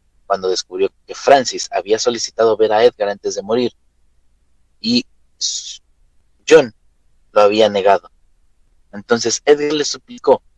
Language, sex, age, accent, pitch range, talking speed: Spanish, male, 30-49, Mexican, 95-155 Hz, 120 wpm